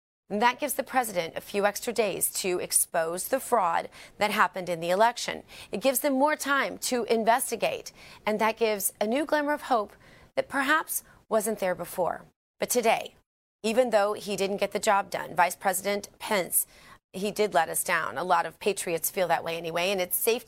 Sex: female